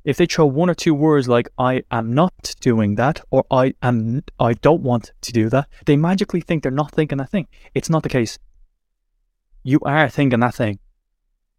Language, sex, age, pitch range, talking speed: English, male, 20-39, 120-175 Hz, 200 wpm